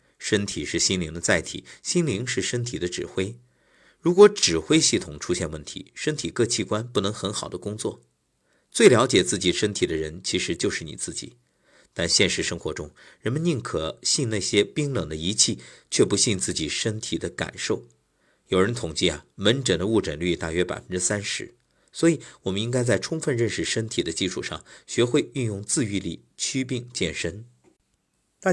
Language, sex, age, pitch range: Chinese, male, 50-69, 85-120 Hz